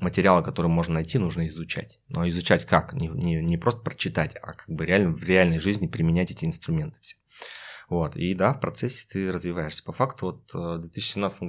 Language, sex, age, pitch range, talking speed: Russian, male, 30-49, 85-125 Hz, 195 wpm